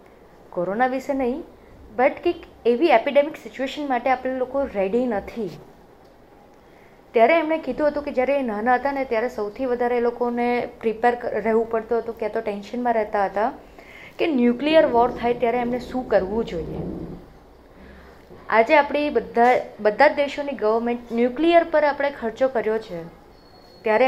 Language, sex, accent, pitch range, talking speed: Gujarati, female, native, 215-265 Hz, 140 wpm